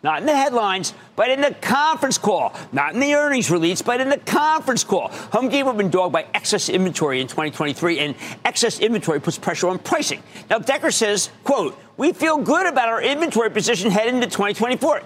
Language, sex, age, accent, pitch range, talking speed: English, male, 50-69, American, 190-290 Hz, 200 wpm